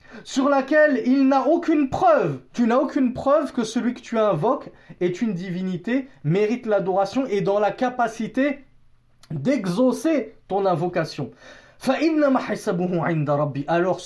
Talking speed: 120 wpm